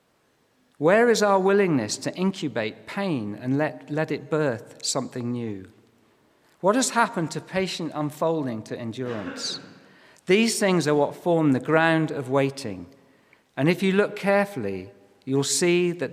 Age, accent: 50-69, British